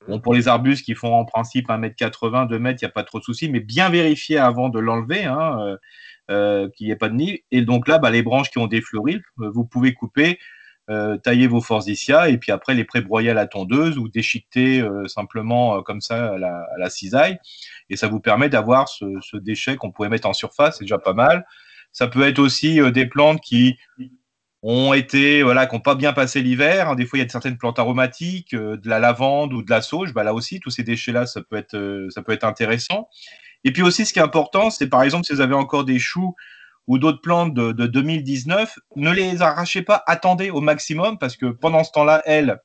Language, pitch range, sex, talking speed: French, 115-160 Hz, male, 235 wpm